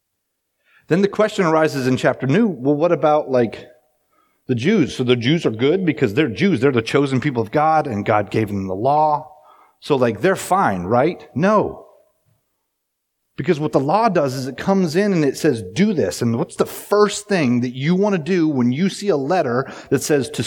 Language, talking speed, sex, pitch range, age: English, 210 wpm, male, 110-165 Hz, 30-49